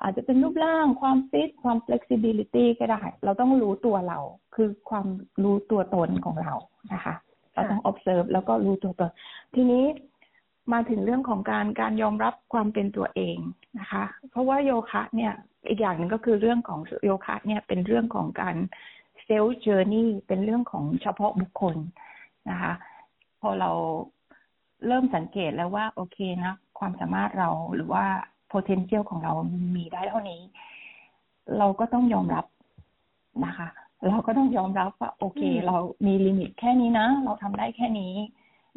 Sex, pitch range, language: female, 190-240 Hz, Thai